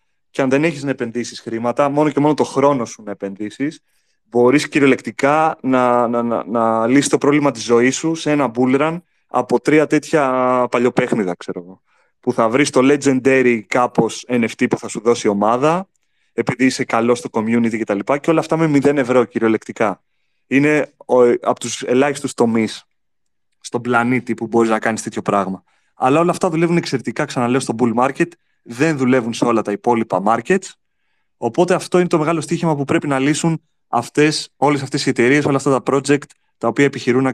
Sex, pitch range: male, 120-150 Hz